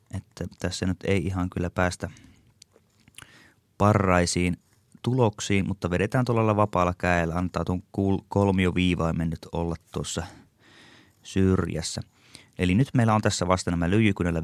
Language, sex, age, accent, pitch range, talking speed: Finnish, male, 20-39, native, 85-100 Hz, 115 wpm